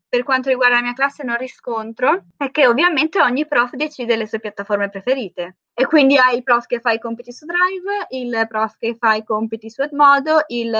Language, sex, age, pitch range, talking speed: Italian, female, 20-39, 220-275 Hz, 210 wpm